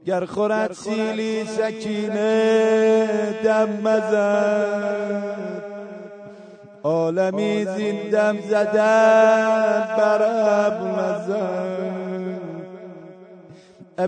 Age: 30-49